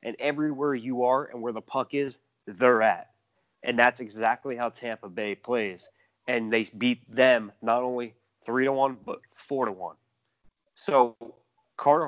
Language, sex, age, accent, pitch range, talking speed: English, male, 20-39, American, 110-135 Hz, 165 wpm